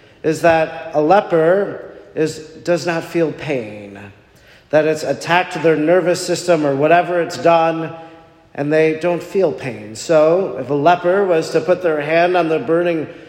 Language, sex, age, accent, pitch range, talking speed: English, male, 40-59, American, 140-165 Hz, 165 wpm